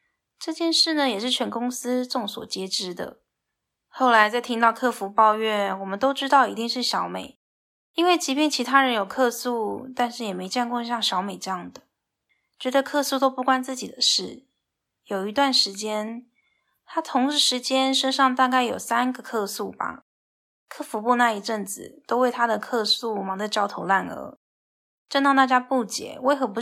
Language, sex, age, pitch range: Chinese, female, 10-29, 215-270 Hz